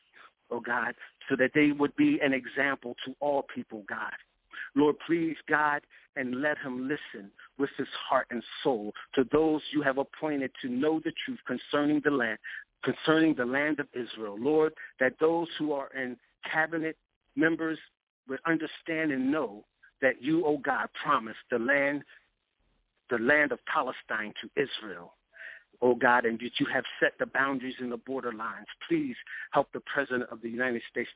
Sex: male